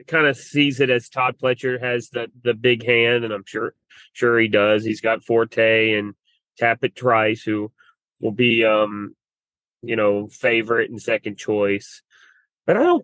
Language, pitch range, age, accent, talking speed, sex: English, 110-130 Hz, 30-49, American, 170 wpm, male